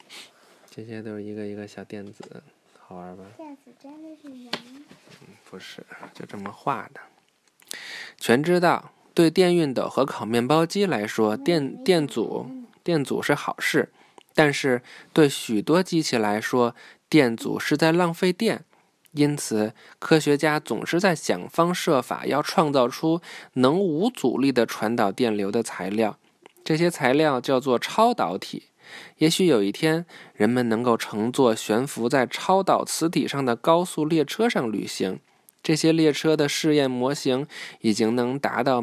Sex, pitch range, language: male, 120-175 Hz, Chinese